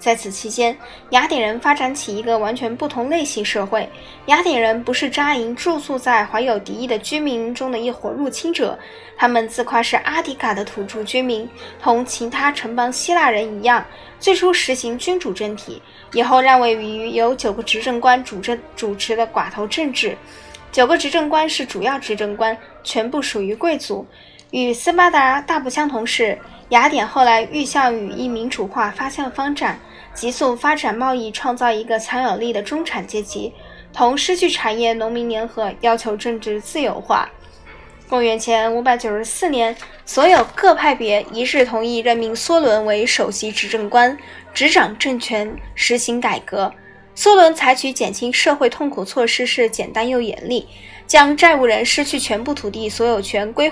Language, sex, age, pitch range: Chinese, female, 10-29, 225-280 Hz